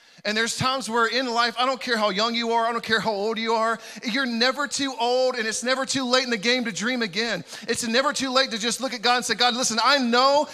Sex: male